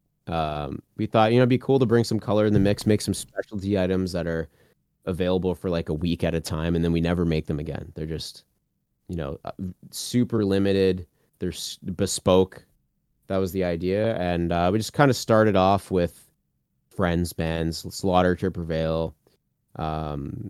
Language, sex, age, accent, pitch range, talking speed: English, male, 30-49, American, 80-100 Hz, 185 wpm